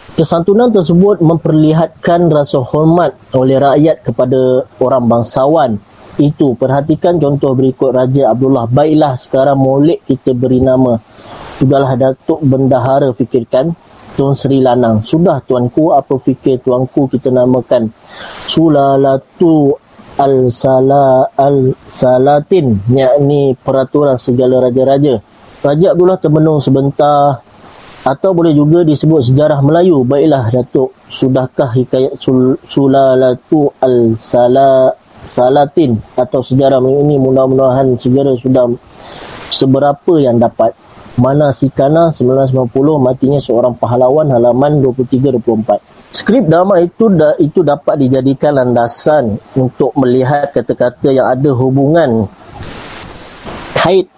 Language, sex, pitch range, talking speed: Malay, male, 130-145 Hz, 105 wpm